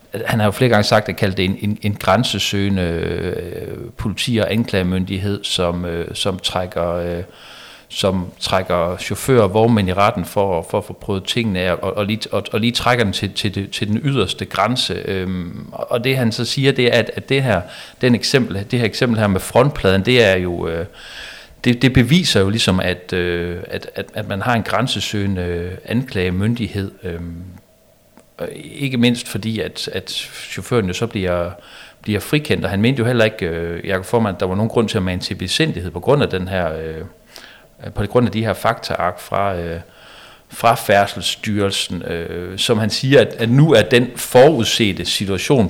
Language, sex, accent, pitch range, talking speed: Danish, male, native, 95-115 Hz, 180 wpm